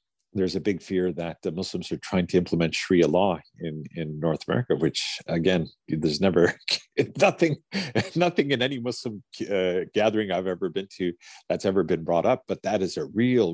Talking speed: 185 wpm